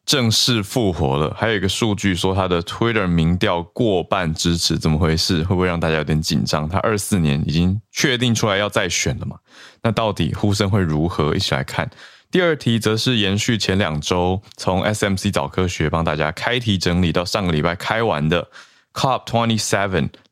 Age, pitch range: 20-39, 85-110 Hz